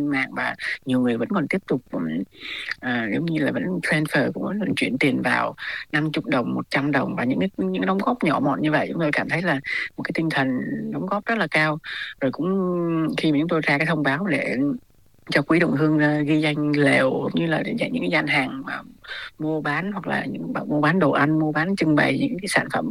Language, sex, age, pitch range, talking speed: Vietnamese, female, 20-39, 135-155 Hz, 235 wpm